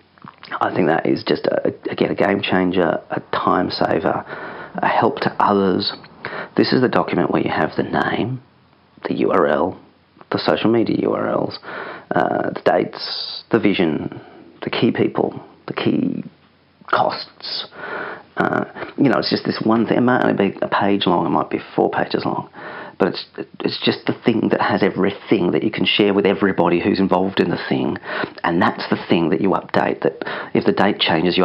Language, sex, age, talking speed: English, male, 40-59, 185 wpm